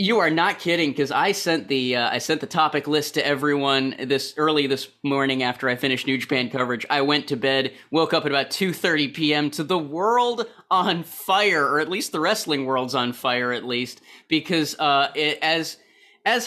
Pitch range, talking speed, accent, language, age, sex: 125-155 Hz, 195 wpm, American, English, 30-49, male